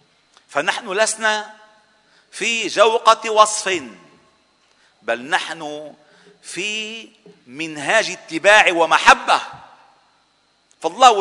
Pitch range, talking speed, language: 205-275 Hz, 65 wpm, Arabic